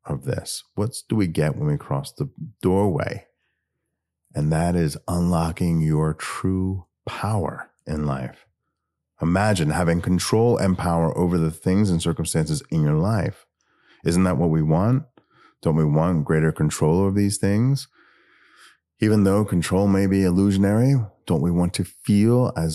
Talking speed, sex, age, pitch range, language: 155 wpm, male, 30-49, 80-110 Hz, English